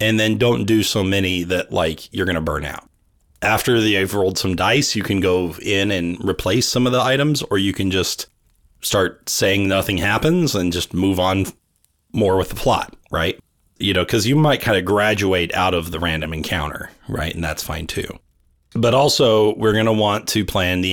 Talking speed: 210 wpm